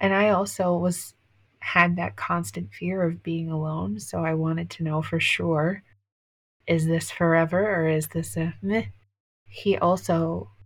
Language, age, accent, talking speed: English, 20-39, American, 160 wpm